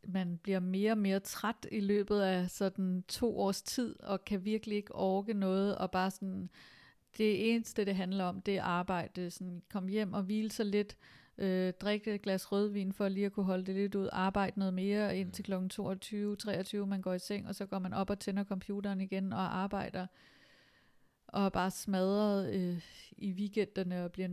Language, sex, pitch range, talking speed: Danish, female, 180-205 Hz, 195 wpm